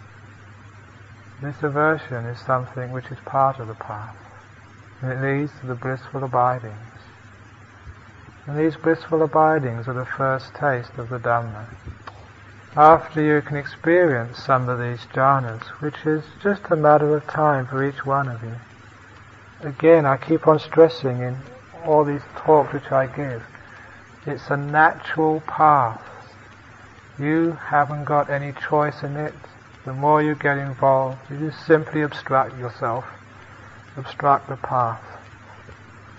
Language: English